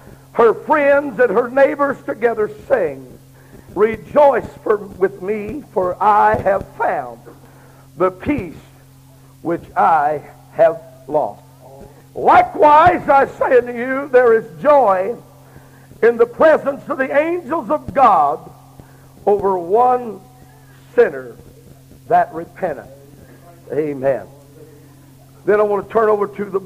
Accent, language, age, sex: American, English, 60-79, male